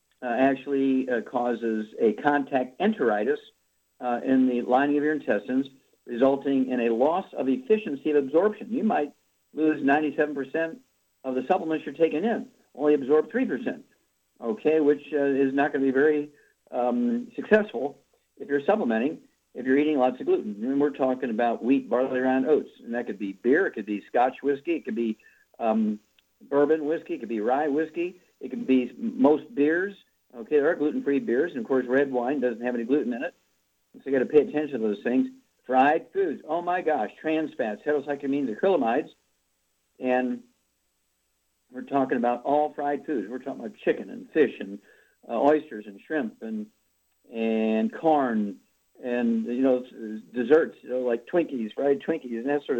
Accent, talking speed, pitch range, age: American, 180 wpm, 120-155 Hz, 50-69